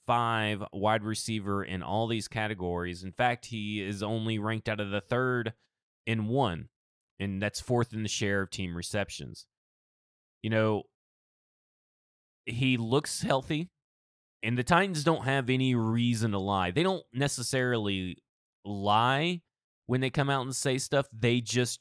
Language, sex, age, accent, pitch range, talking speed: English, male, 20-39, American, 100-125 Hz, 150 wpm